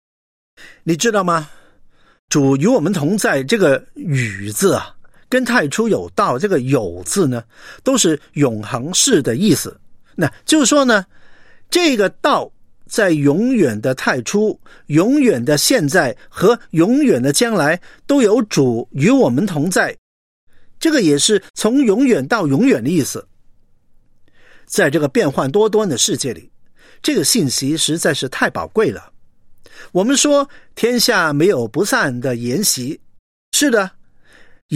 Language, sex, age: Chinese, male, 50-69